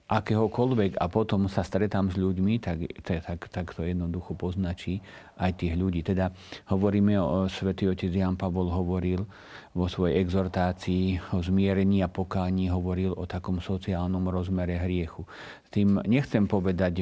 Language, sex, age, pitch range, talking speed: Slovak, male, 50-69, 90-100 Hz, 150 wpm